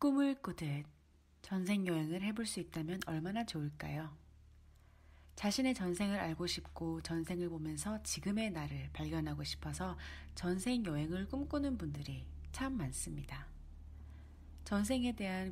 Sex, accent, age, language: female, native, 30-49, Korean